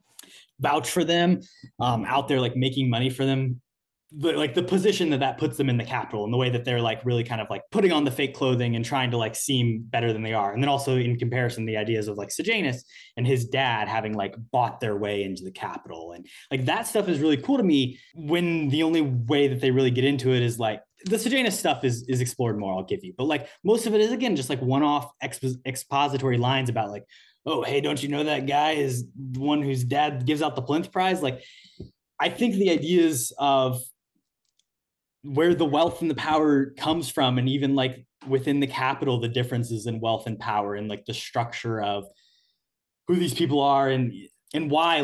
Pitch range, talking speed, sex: 120-145 Hz, 225 wpm, male